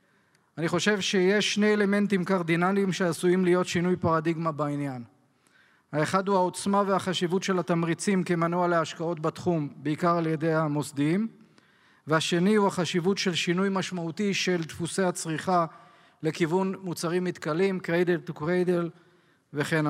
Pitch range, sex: 165-190 Hz, male